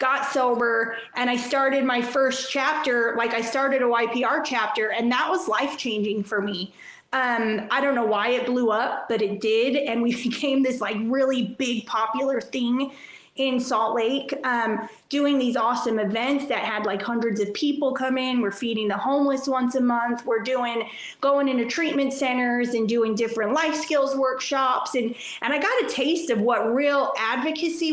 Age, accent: 30-49, American